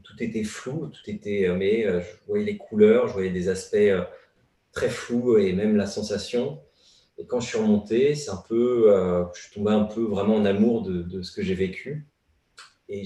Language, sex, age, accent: French, male, 30-49, French